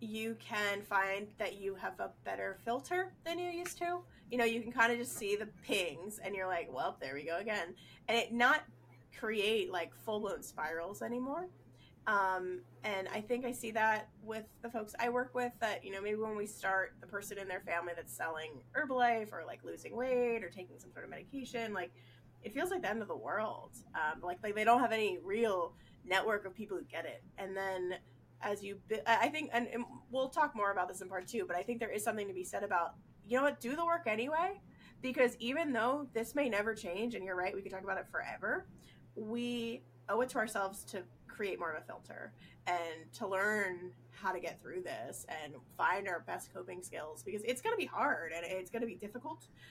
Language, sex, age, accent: English, female, 20-39, American